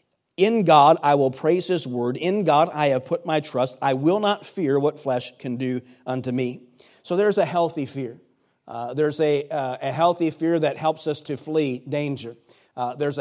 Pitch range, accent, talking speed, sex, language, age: 125-155 Hz, American, 200 wpm, male, English, 40-59